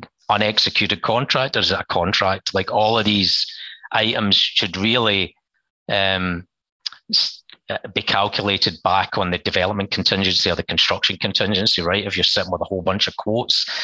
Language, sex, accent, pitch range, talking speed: English, male, British, 90-105 Hz, 145 wpm